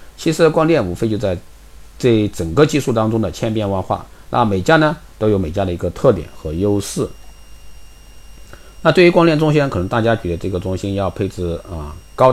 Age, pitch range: 50-69, 85-120 Hz